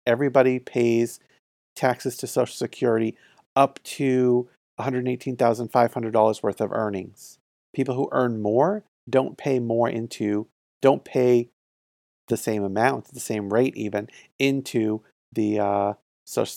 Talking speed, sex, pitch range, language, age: 120 wpm, male, 105-135 Hz, English, 40-59